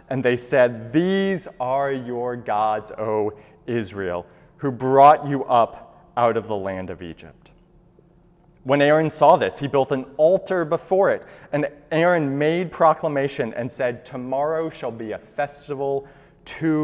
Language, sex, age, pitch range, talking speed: English, male, 30-49, 120-170 Hz, 145 wpm